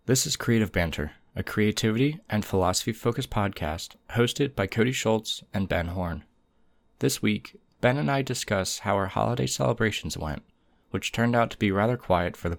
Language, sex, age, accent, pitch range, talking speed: English, male, 20-39, American, 95-110 Hz, 170 wpm